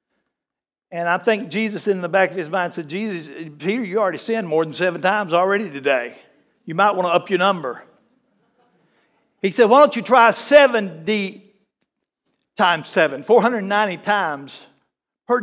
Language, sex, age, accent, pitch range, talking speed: English, male, 60-79, American, 205-255 Hz, 160 wpm